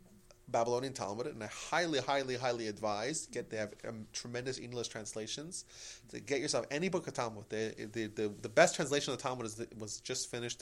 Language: English